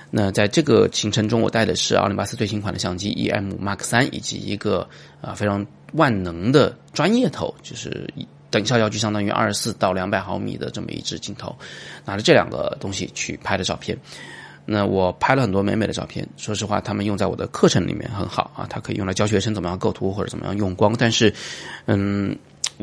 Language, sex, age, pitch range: Chinese, male, 20-39, 95-115 Hz